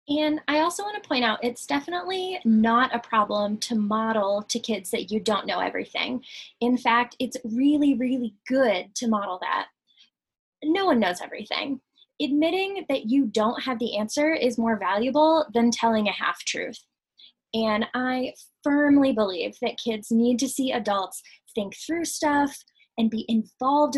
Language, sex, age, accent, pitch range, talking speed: English, female, 10-29, American, 215-285 Hz, 160 wpm